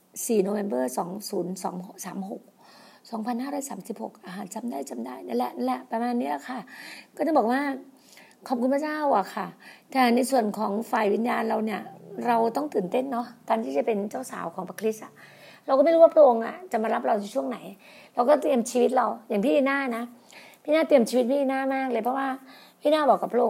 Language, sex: Thai, female